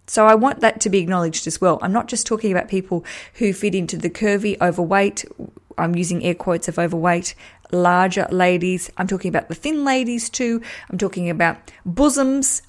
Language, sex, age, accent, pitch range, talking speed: English, female, 20-39, Australian, 185-225 Hz, 190 wpm